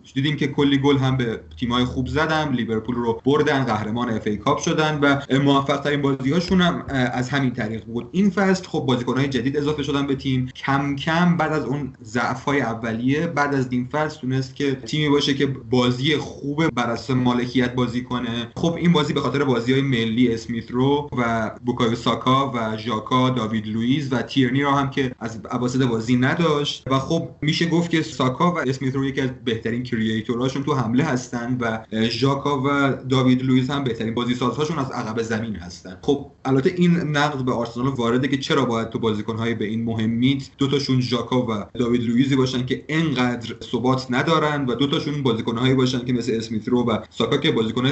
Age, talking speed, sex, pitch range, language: 30-49, 185 wpm, male, 120-145 Hz, Persian